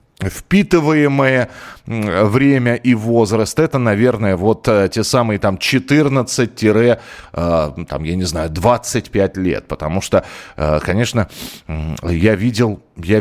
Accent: native